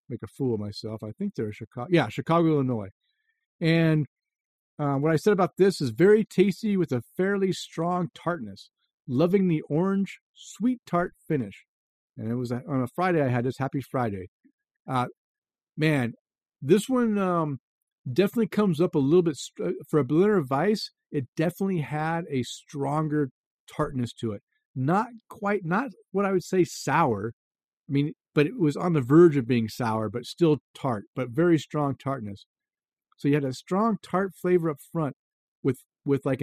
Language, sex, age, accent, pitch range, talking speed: English, male, 50-69, American, 130-180 Hz, 175 wpm